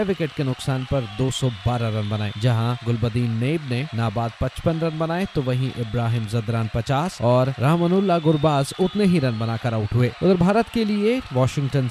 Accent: native